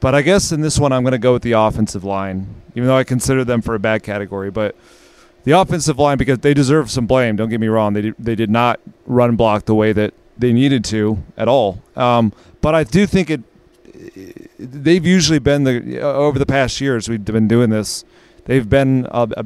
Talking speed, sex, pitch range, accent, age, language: 215 wpm, male, 110-135 Hz, American, 30-49, English